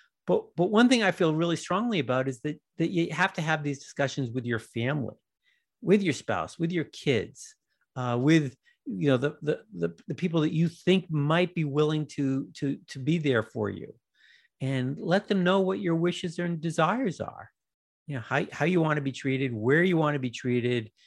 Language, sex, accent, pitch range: English, male, American, 125-160 Hz